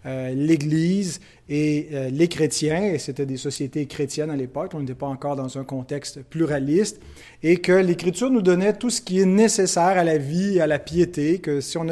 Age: 30-49